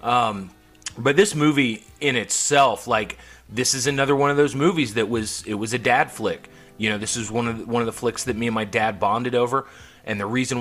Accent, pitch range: American, 105-125 Hz